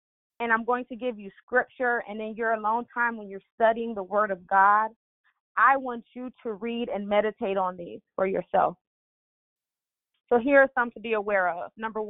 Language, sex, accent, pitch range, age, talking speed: English, female, American, 200-240 Hz, 20-39, 195 wpm